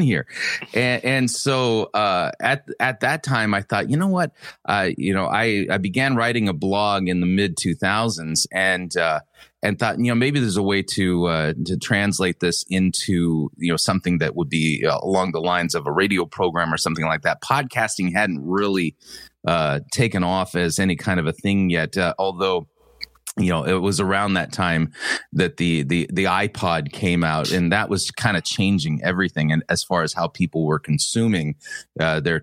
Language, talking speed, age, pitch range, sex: English, 200 wpm, 30-49, 85-110 Hz, male